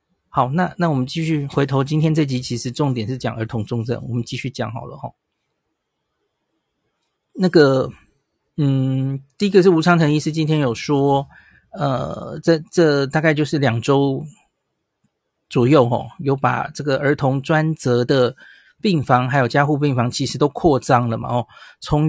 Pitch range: 125-155 Hz